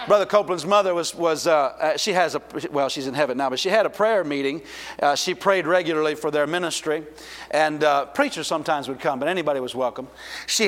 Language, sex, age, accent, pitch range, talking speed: English, male, 50-69, American, 150-195 Hz, 215 wpm